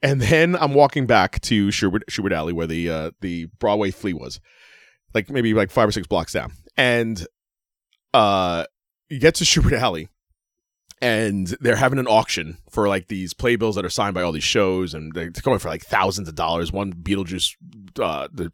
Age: 30-49